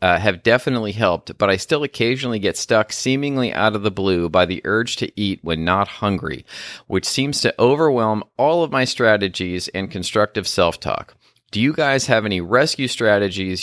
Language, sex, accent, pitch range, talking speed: English, male, American, 90-110 Hz, 180 wpm